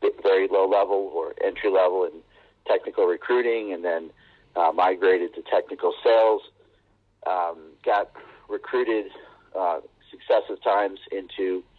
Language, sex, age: English, male, 50-69